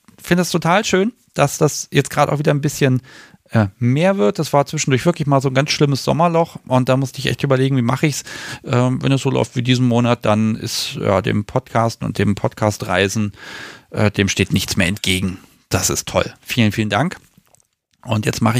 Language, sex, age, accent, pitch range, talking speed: German, male, 40-59, German, 110-145 Hz, 215 wpm